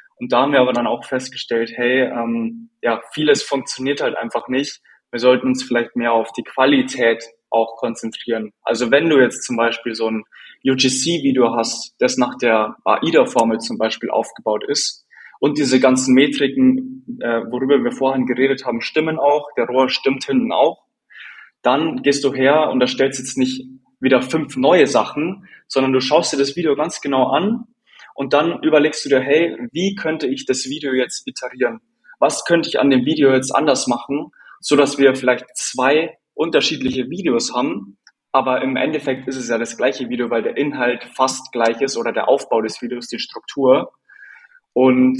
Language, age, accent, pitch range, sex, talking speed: German, 10-29, German, 120-140 Hz, male, 180 wpm